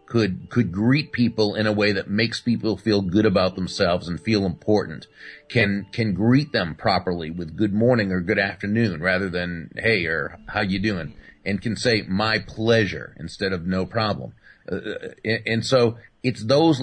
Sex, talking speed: male, 175 wpm